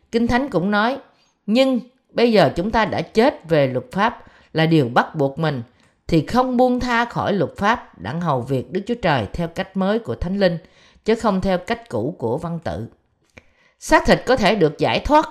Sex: female